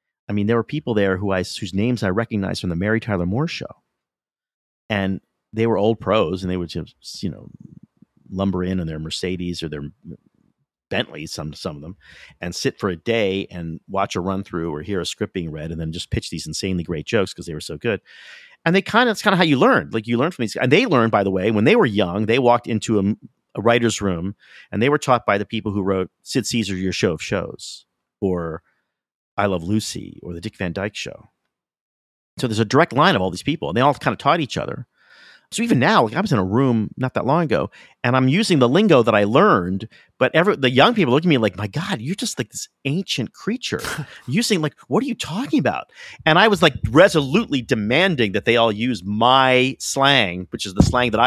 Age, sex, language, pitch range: 40-59, male, English, 95-125 Hz